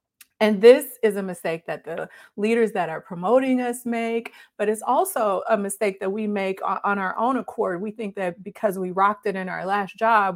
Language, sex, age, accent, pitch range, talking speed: English, female, 30-49, American, 180-215 Hz, 210 wpm